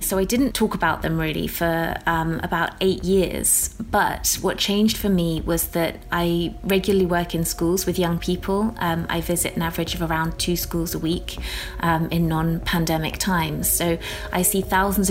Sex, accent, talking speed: female, British, 185 wpm